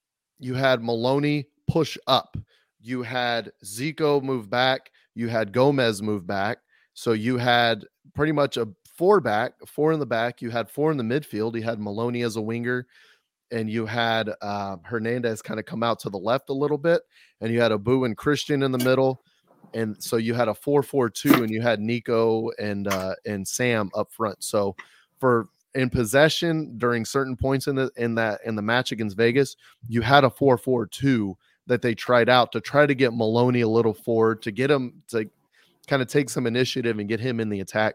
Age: 30-49